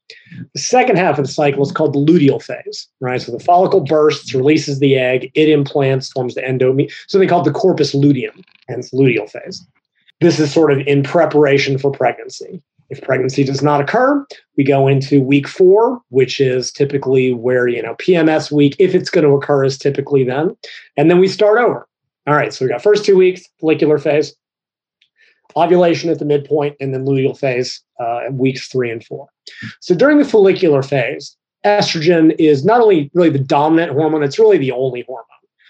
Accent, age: American, 30-49